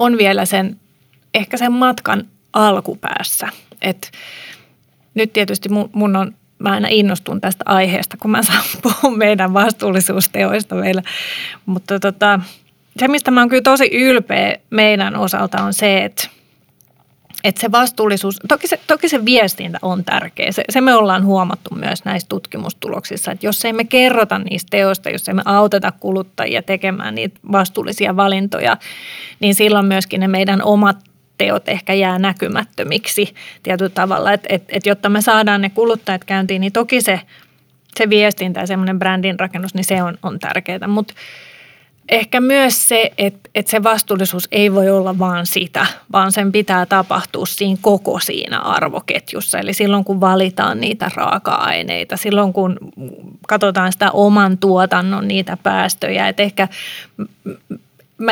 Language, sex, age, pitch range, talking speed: Finnish, female, 30-49, 190-220 Hz, 150 wpm